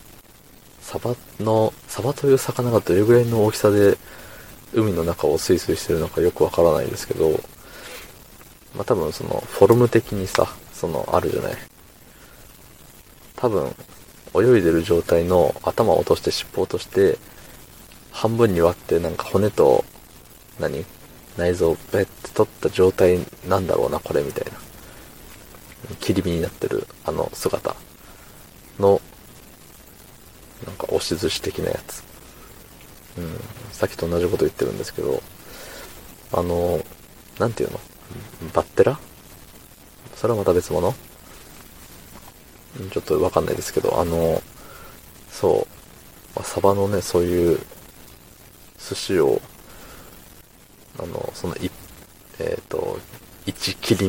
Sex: male